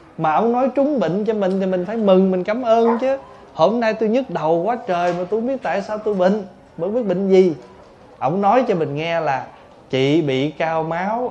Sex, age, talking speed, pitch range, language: male, 20-39, 230 wpm, 150-205 Hz, Vietnamese